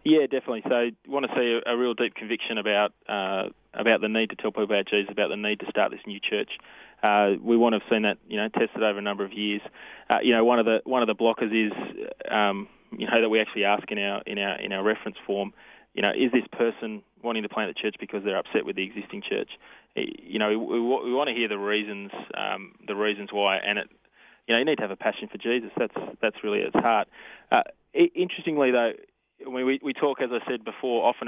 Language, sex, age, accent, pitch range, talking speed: English, male, 20-39, Australian, 105-120 Hz, 250 wpm